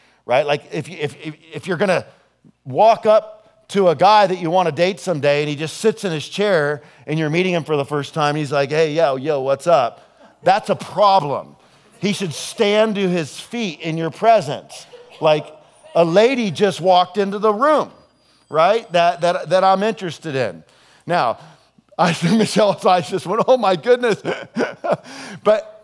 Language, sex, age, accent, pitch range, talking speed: English, male, 40-59, American, 135-190 Hz, 180 wpm